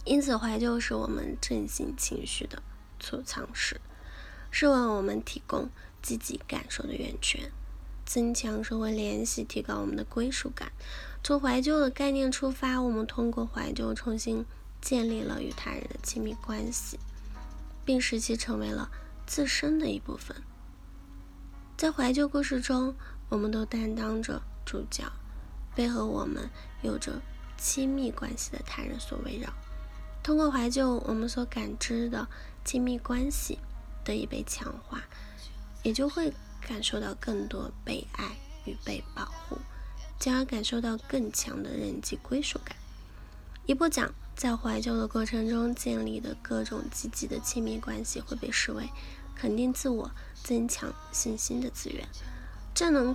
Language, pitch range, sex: Chinese, 220-260 Hz, female